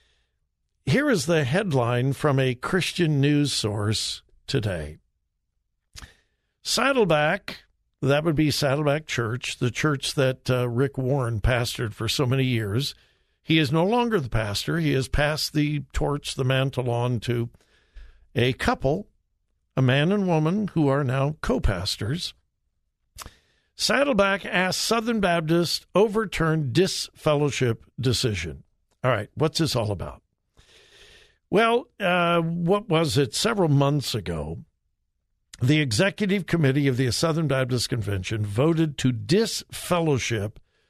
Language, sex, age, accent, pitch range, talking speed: English, male, 60-79, American, 120-165 Hz, 125 wpm